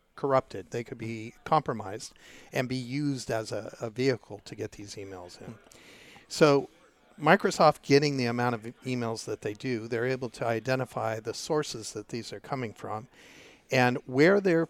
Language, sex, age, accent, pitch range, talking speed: English, male, 50-69, American, 120-140 Hz, 165 wpm